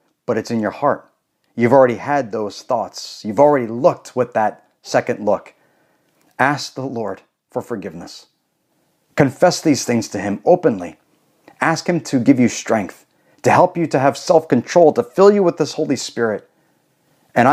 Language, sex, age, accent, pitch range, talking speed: English, male, 40-59, American, 115-155 Hz, 165 wpm